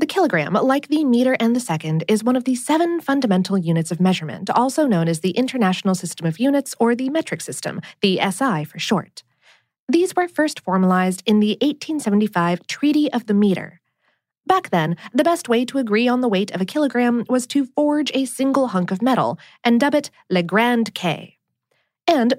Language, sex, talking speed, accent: English, female, 195 wpm, American